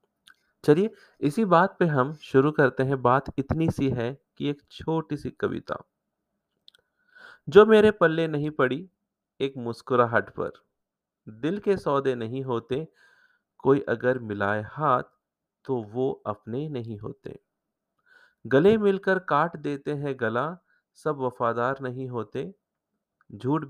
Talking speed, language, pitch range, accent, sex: 125 wpm, Hindi, 125-160 Hz, native, male